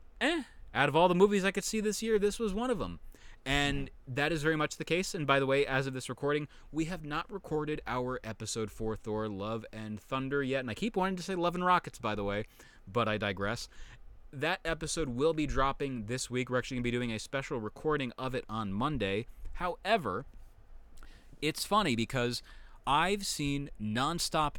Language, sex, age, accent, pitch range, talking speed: English, male, 30-49, American, 115-155 Hz, 205 wpm